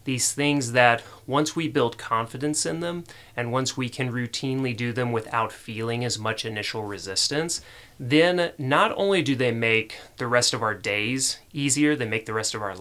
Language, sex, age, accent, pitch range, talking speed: English, male, 30-49, American, 110-135 Hz, 185 wpm